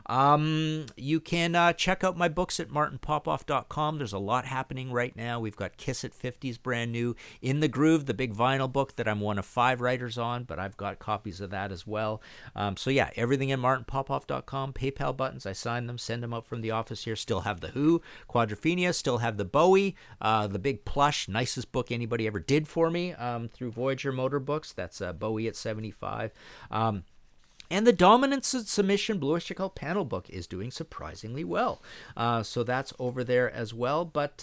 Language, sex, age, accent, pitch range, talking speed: English, male, 50-69, American, 115-170 Hz, 200 wpm